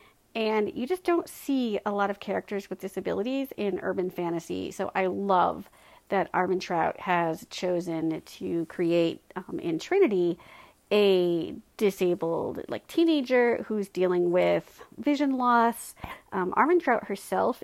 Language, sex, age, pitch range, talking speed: English, female, 40-59, 185-260 Hz, 135 wpm